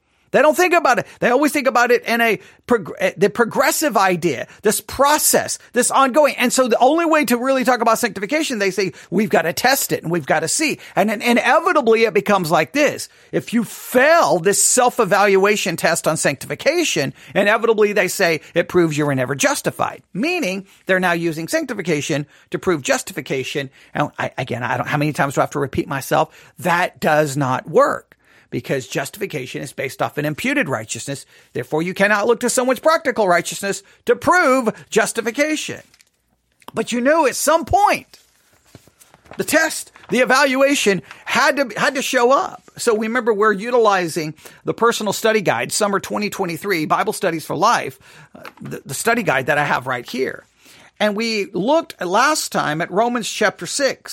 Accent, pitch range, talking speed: American, 170-250 Hz, 180 wpm